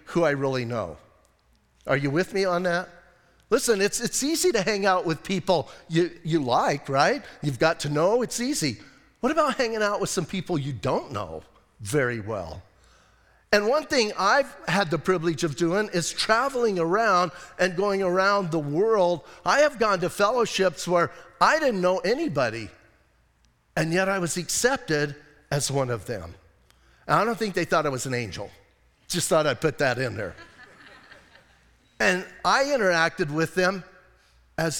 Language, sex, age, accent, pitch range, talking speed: English, male, 50-69, American, 150-200 Hz, 170 wpm